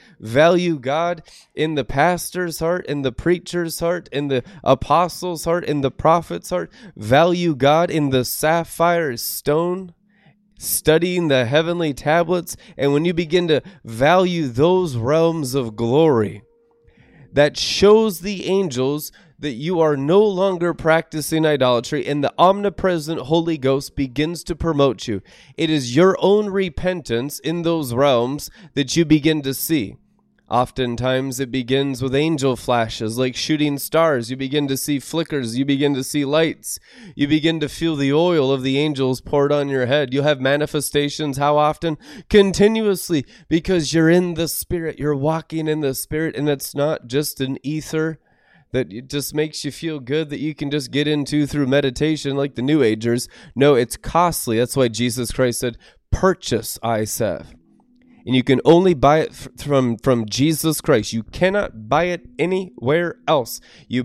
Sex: male